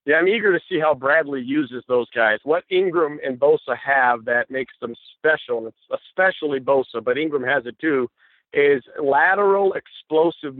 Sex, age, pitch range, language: male, 50-69, 130-160 Hz, English